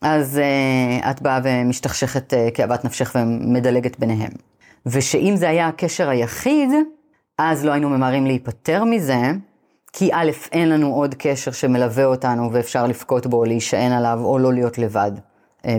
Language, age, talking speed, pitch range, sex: Hebrew, 30-49, 150 wpm, 120-155 Hz, female